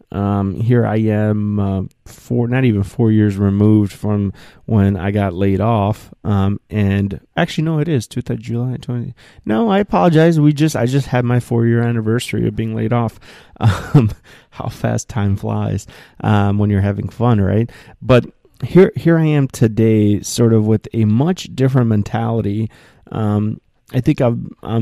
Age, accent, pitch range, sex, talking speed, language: 30-49, American, 105-125 Hz, male, 170 wpm, English